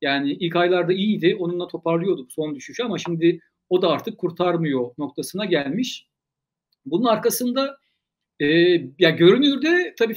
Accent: native